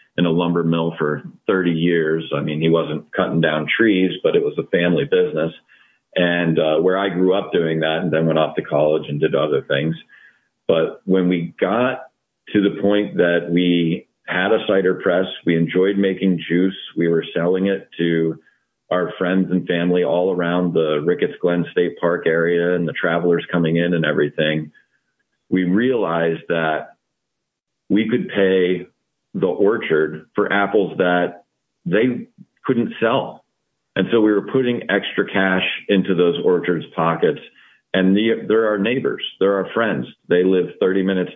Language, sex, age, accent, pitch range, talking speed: English, male, 40-59, American, 85-95 Hz, 165 wpm